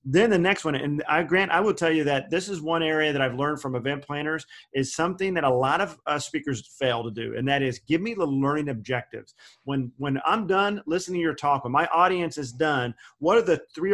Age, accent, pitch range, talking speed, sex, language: 40-59, American, 135-165 Hz, 245 wpm, male, English